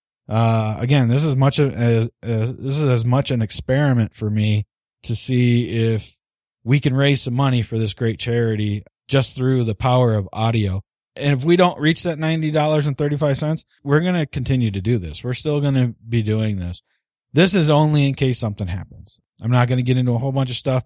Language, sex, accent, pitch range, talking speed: English, male, American, 115-140 Hz, 215 wpm